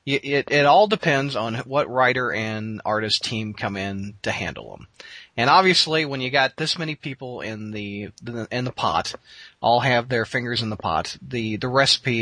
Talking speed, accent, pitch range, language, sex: 185 wpm, American, 115-170 Hz, English, male